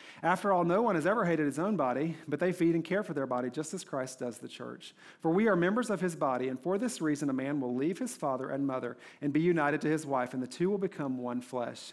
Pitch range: 150-195 Hz